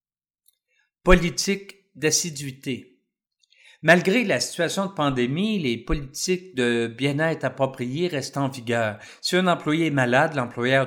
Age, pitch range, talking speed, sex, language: 50-69, 120-150 Hz, 115 wpm, male, French